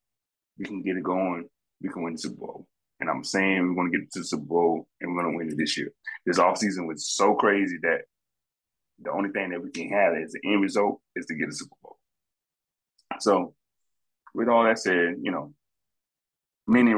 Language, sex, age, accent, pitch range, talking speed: English, male, 20-39, American, 85-95 Hz, 210 wpm